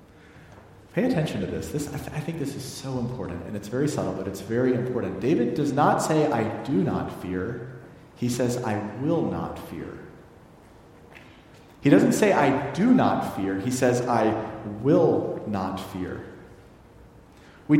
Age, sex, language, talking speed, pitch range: 40-59, male, English, 165 wpm, 110-155 Hz